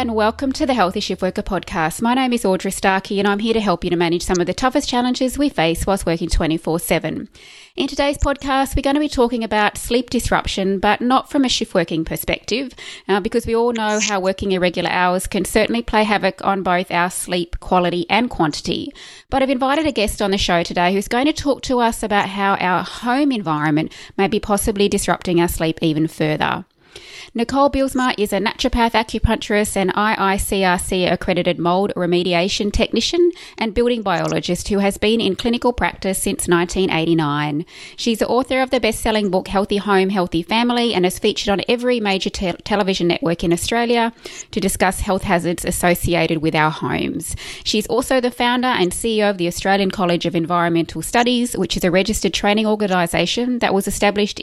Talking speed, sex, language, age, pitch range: 185 wpm, female, English, 20-39, 180-240 Hz